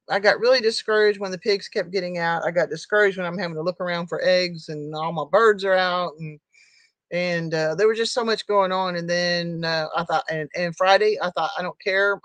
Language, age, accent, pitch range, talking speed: English, 40-59, American, 165-215 Hz, 245 wpm